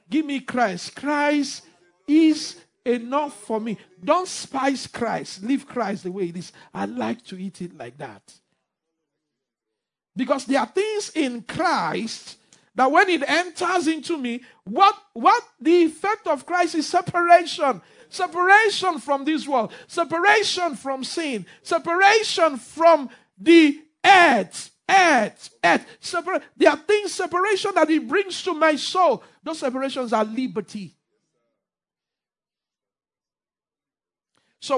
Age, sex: 50-69, male